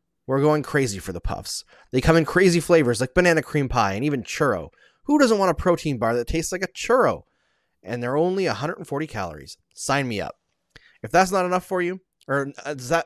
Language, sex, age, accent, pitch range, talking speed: English, male, 30-49, American, 120-170 Hz, 205 wpm